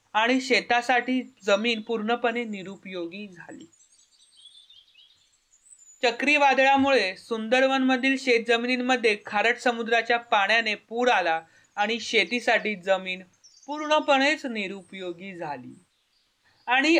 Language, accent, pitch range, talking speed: Marathi, native, 205-255 Hz, 80 wpm